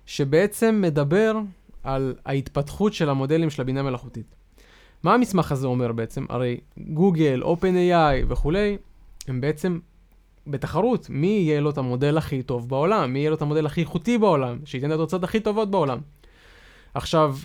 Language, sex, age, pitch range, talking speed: Hebrew, male, 20-39, 135-190 Hz, 160 wpm